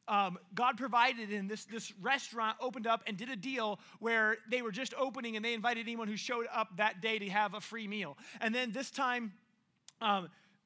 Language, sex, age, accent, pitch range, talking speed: English, male, 30-49, American, 210-265 Hz, 210 wpm